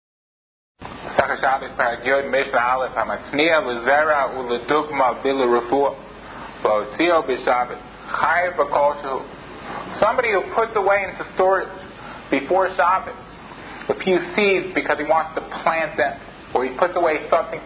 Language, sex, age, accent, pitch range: English, male, 30-49, American, 160-220 Hz